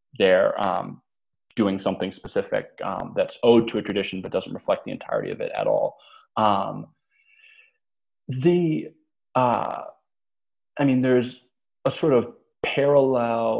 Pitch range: 100-140 Hz